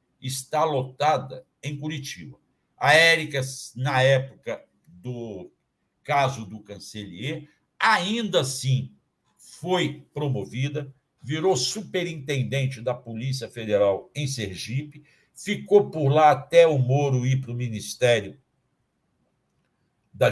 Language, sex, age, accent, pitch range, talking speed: Portuguese, male, 60-79, Brazilian, 120-145 Hz, 100 wpm